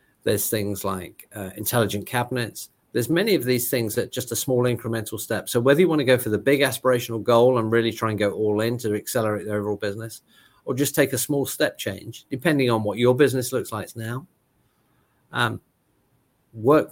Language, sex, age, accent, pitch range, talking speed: English, male, 50-69, British, 105-125 Hz, 200 wpm